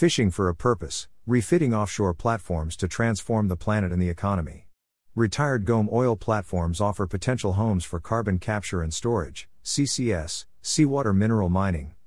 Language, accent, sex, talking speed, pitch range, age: English, American, male, 150 wpm, 90-115 Hz, 50-69